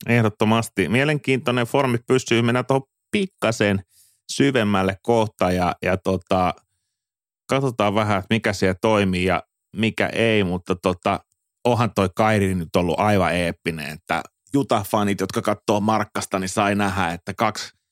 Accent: native